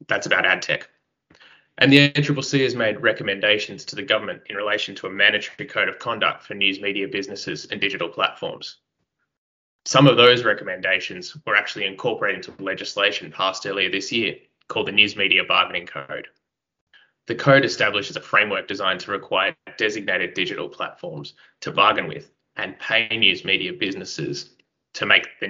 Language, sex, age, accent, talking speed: English, male, 20-39, Australian, 160 wpm